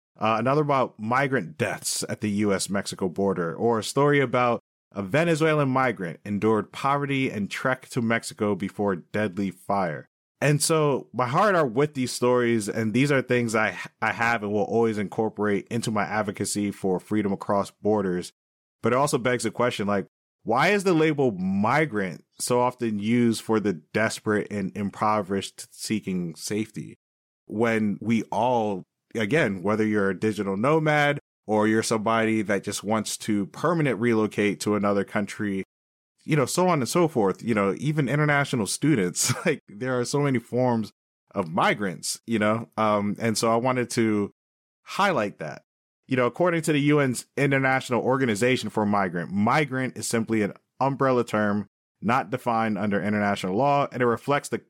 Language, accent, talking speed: English, American, 165 wpm